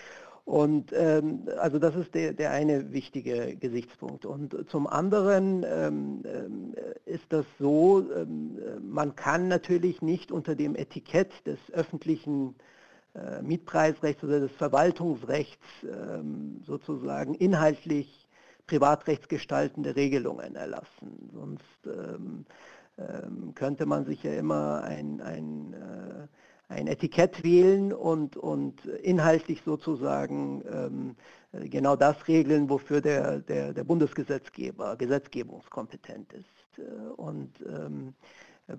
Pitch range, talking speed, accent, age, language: 120-160 Hz, 110 wpm, German, 60-79, German